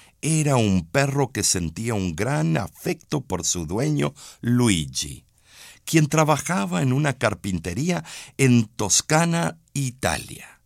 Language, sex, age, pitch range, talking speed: Spanish, male, 60-79, 85-130 Hz, 115 wpm